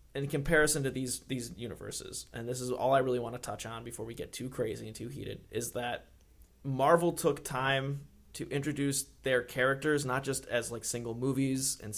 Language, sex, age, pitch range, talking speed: English, male, 20-39, 115-135 Hz, 200 wpm